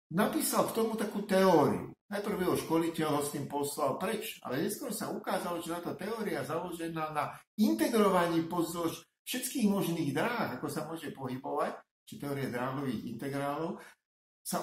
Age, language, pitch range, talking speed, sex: 50-69, Slovak, 125-180 Hz, 150 wpm, male